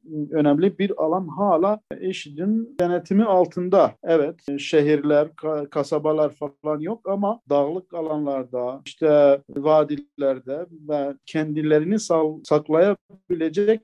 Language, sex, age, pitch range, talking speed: Turkish, male, 50-69, 150-185 Hz, 90 wpm